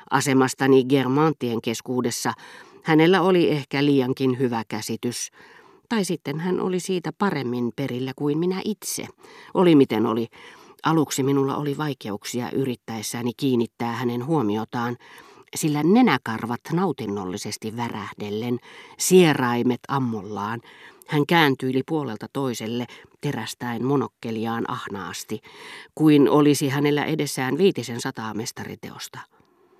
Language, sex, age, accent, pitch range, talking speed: Finnish, female, 40-59, native, 120-165 Hz, 100 wpm